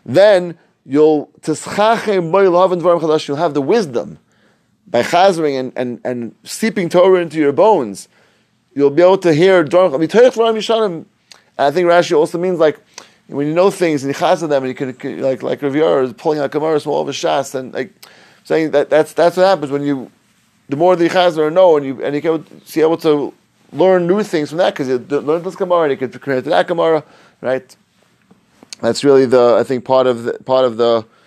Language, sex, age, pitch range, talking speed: English, male, 30-49, 125-170 Hz, 195 wpm